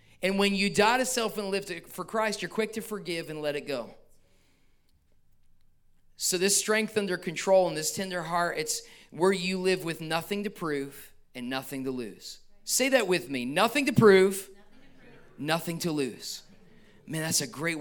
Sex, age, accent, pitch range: male, 30-49, American, 135-180 Hz